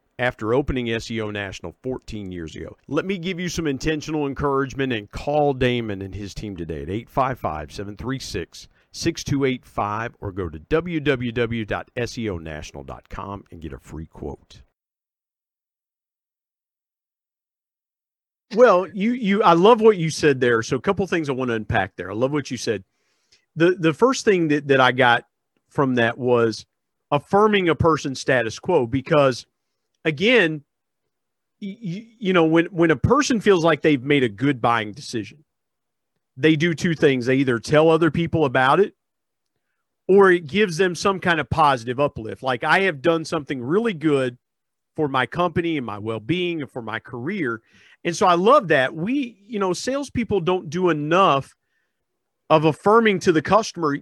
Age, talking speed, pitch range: 50-69, 160 wpm, 120-175 Hz